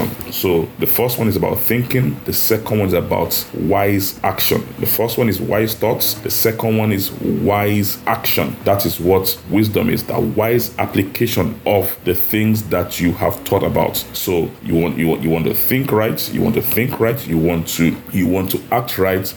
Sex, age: male, 30-49